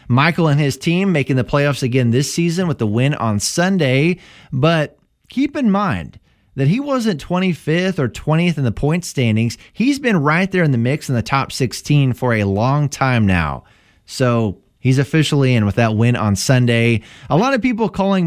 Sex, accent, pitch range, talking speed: male, American, 120-165 Hz, 195 wpm